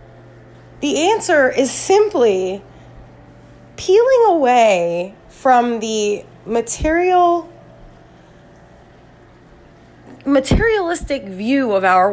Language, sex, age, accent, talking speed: English, female, 20-39, American, 65 wpm